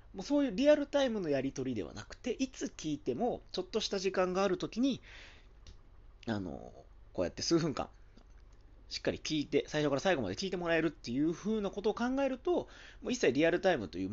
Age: 40-59